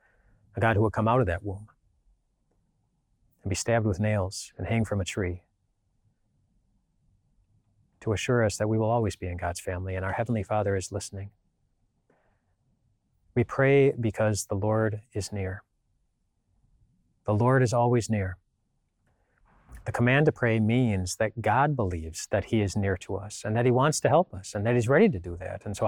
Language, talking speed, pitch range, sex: English, 180 wpm, 100-130 Hz, male